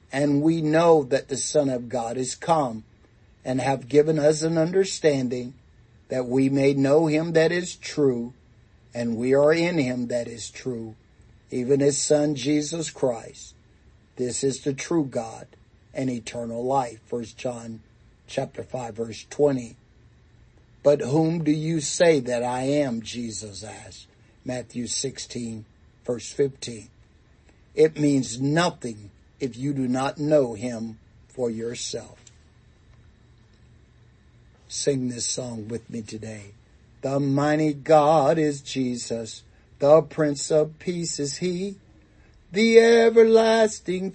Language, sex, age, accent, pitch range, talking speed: English, male, 50-69, American, 120-160 Hz, 130 wpm